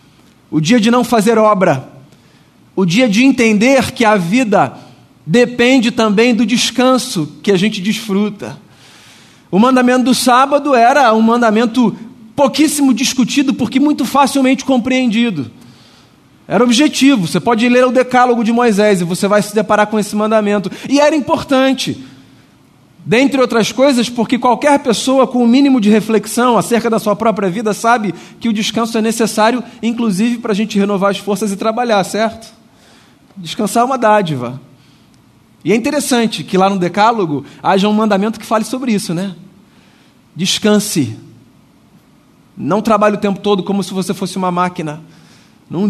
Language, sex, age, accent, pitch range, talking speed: Portuguese, male, 40-59, Brazilian, 190-240 Hz, 155 wpm